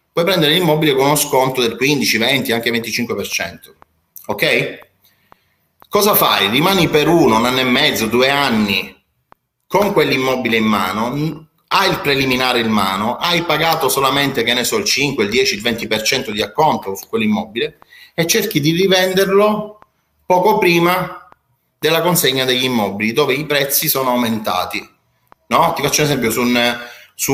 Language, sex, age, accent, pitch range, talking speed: Italian, male, 30-49, native, 115-155 Hz, 155 wpm